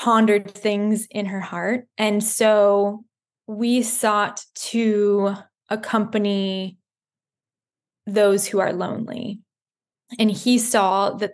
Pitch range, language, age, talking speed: 195-220 Hz, English, 20-39, 100 wpm